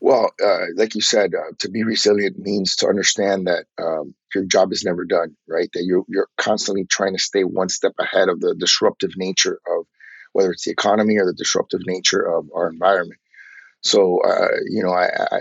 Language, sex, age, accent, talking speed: English, male, 30-49, American, 200 wpm